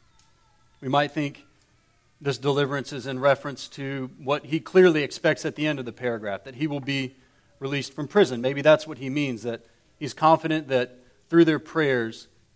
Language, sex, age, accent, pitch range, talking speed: English, male, 40-59, American, 130-165 Hz, 180 wpm